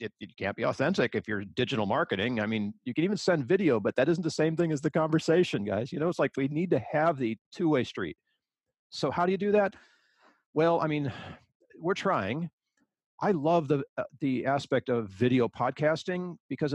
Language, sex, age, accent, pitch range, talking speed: English, male, 50-69, American, 120-165 Hz, 205 wpm